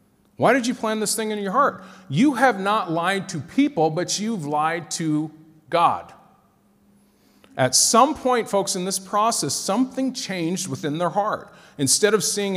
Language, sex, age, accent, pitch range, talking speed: English, male, 40-59, American, 120-185 Hz, 165 wpm